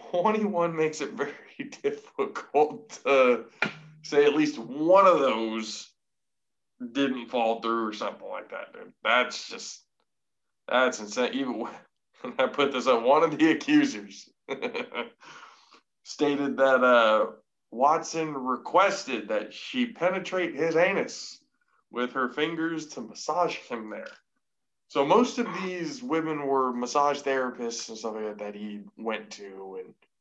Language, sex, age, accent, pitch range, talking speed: English, male, 20-39, American, 110-165 Hz, 135 wpm